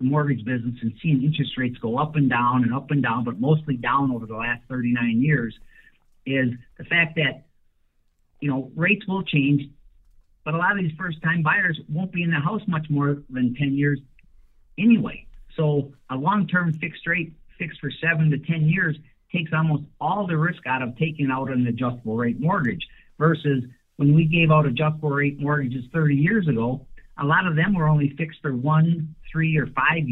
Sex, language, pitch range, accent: male, English, 130-165 Hz, American